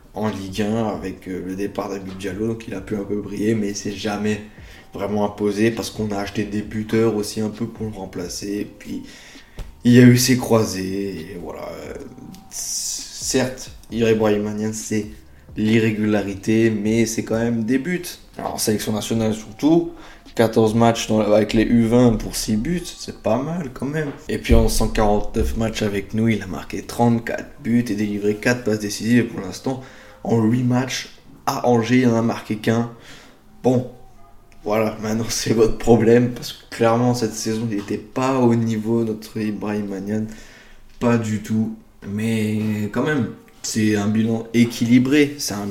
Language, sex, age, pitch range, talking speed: French, male, 20-39, 105-115 Hz, 175 wpm